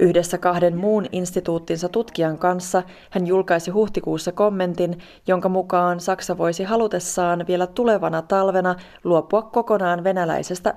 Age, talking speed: 30-49, 115 wpm